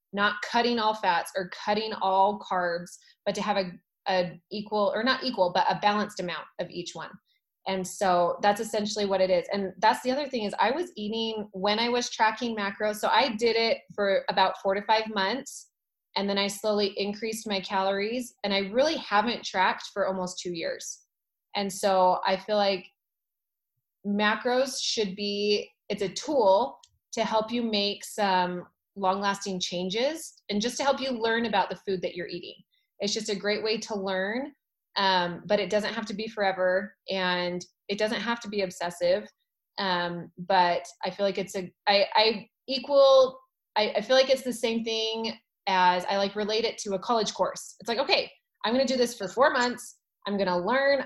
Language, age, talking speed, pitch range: English, 20-39, 195 wpm, 190-230 Hz